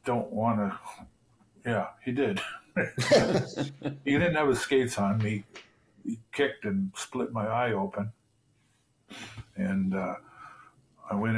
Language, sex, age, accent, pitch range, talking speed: English, male, 50-69, American, 100-130 Hz, 130 wpm